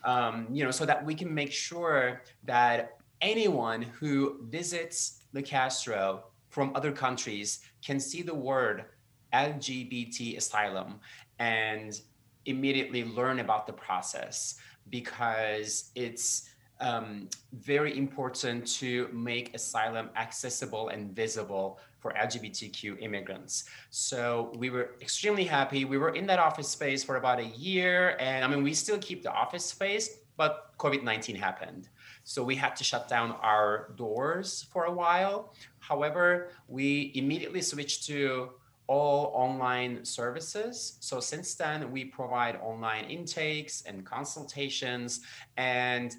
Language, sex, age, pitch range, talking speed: English, male, 30-49, 120-150 Hz, 130 wpm